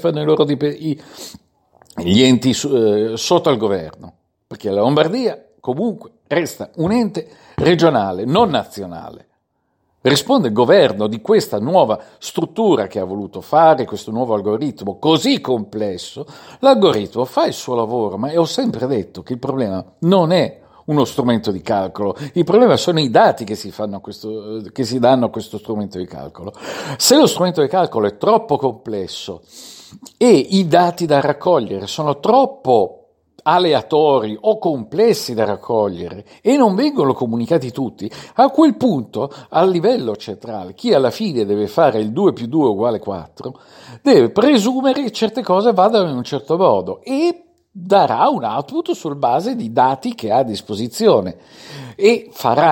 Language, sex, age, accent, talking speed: Italian, male, 50-69, native, 155 wpm